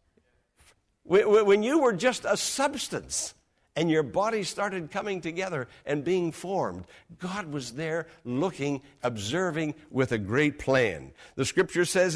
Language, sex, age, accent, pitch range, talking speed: English, male, 60-79, American, 130-200 Hz, 135 wpm